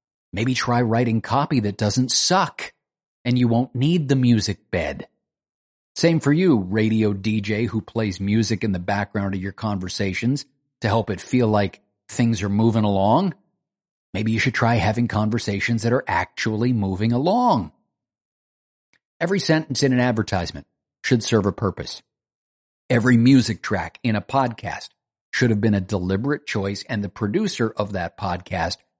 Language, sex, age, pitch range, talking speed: English, male, 50-69, 95-125 Hz, 155 wpm